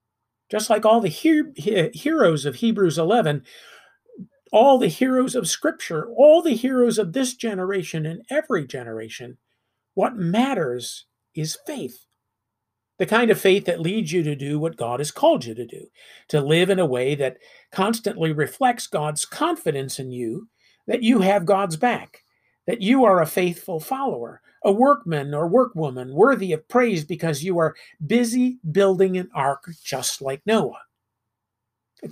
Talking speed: 155 wpm